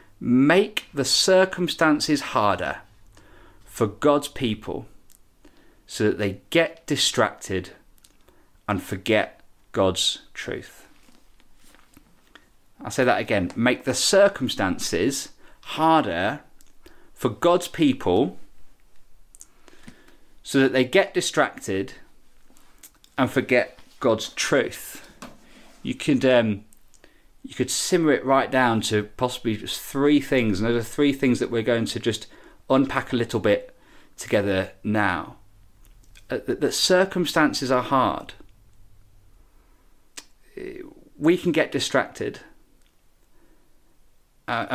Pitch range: 110-155 Hz